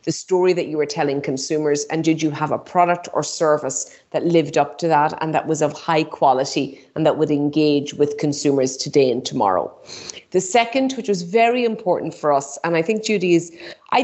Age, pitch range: 30-49, 145-170 Hz